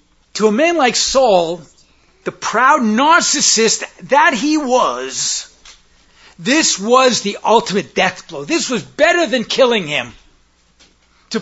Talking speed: 125 wpm